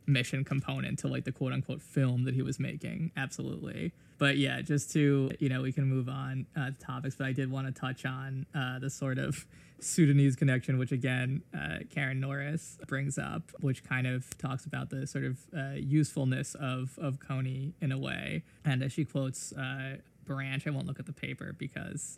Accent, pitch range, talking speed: American, 135-155 Hz, 200 wpm